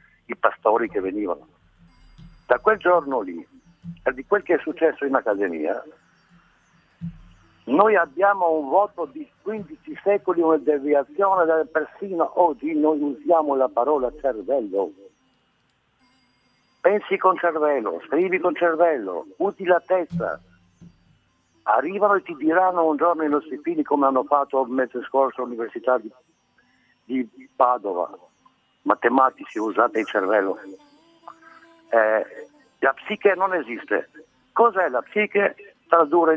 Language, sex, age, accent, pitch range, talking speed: Italian, male, 60-79, native, 140-215 Hz, 120 wpm